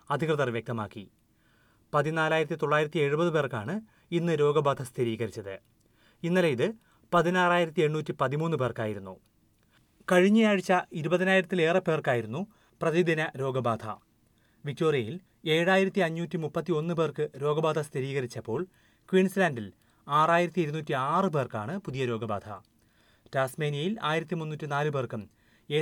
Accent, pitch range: native, 125-175 Hz